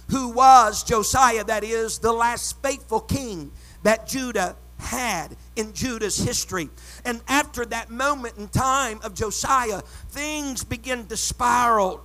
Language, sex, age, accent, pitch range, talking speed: English, male, 50-69, American, 210-260 Hz, 135 wpm